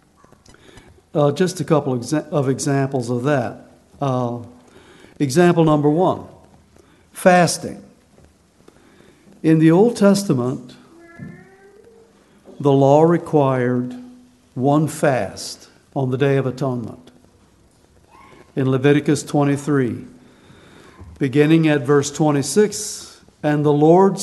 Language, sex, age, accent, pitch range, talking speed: English, male, 60-79, American, 135-175 Hz, 95 wpm